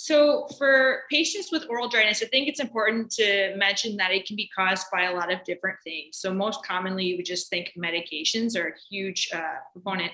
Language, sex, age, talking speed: English, female, 20-39, 205 wpm